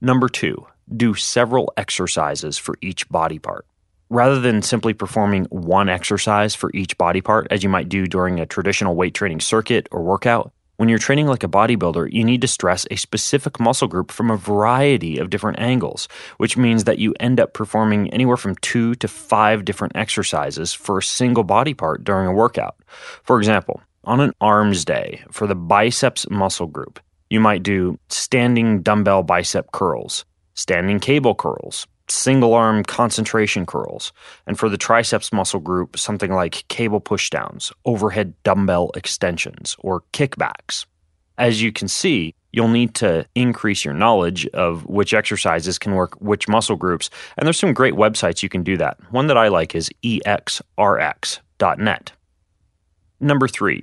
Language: English